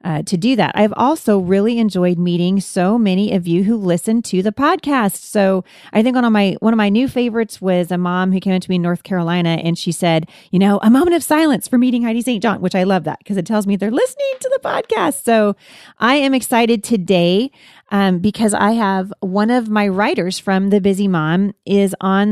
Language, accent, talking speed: English, American, 225 wpm